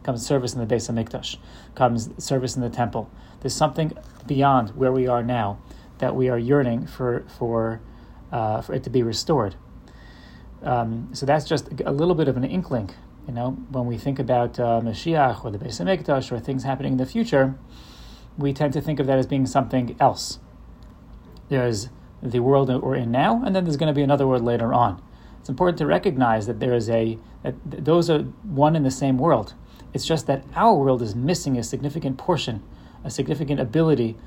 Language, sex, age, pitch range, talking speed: English, male, 30-49, 120-140 Hz, 200 wpm